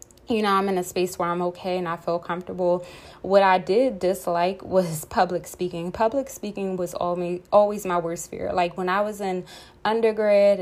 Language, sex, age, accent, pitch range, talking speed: English, female, 20-39, American, 175-195 Hz, 185 wpm